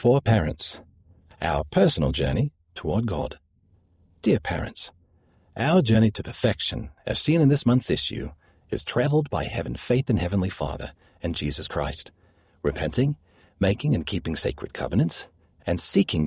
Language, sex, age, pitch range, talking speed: English, male, 50-69, 85-120 Hz, 140 wpm